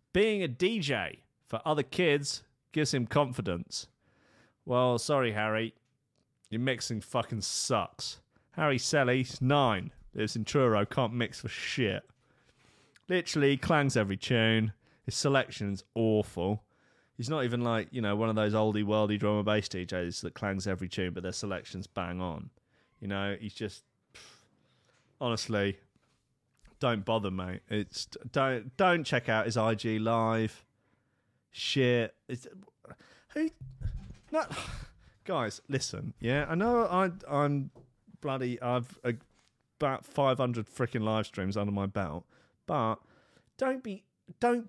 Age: 30-49